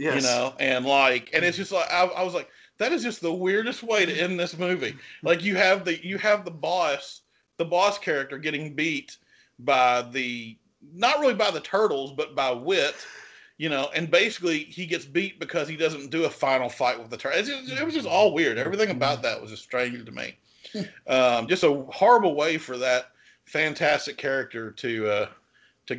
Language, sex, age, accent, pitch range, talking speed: English, male, 40-59, American, 115-170 Hz, 200 wpm